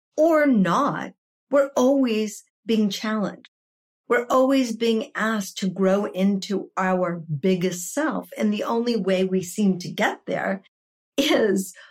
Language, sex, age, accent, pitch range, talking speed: English, female, 50-69, American, 170-220 Hz, 130 wpm